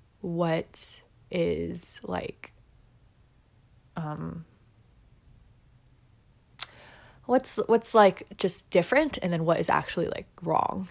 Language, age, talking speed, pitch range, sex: English, 20-39, 90 wpm, 120-195 Hz, female